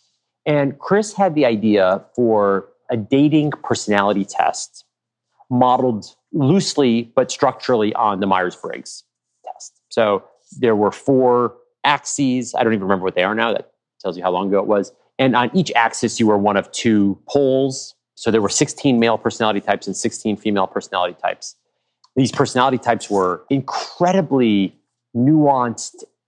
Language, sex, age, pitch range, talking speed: English, male, 30-49, 110-140 Hz, 155 wpm